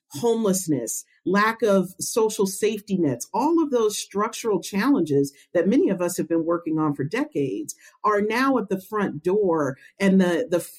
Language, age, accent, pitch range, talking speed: English, 50-69, American, 175-245 Hz, 165 wpm